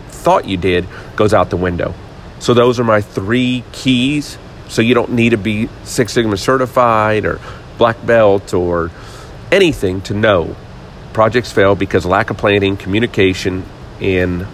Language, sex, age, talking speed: English, male, 40-59, 155 wpm